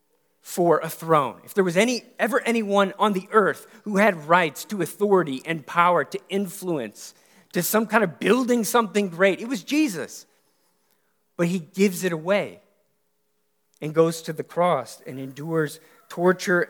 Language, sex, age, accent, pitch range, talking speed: English, male, 40-59, American, 140-190 Hz, 160 wpm